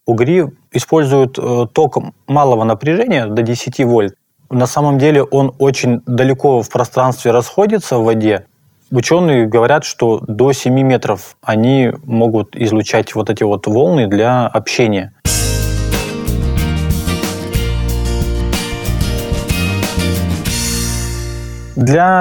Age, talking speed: 20-39, 95 wpm